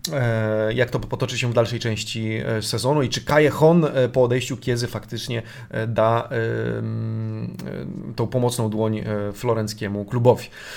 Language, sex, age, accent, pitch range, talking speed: Polish, male, 30-49, native, 125-165 Hz, 115 wpm